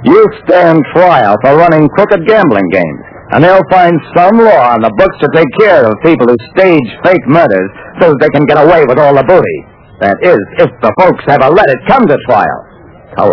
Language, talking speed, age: English, 205 wpm, 60-79